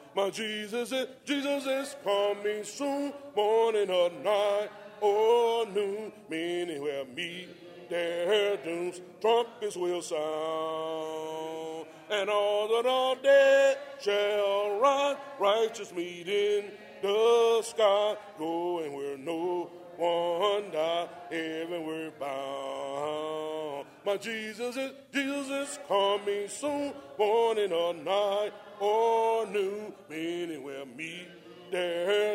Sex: male